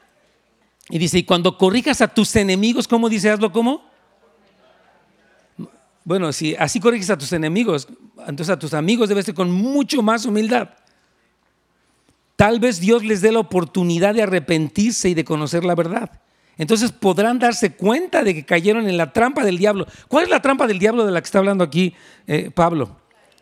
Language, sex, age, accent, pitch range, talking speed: Spanish, male, 50-69, Mexican, 165-225 Hz, 175 wpm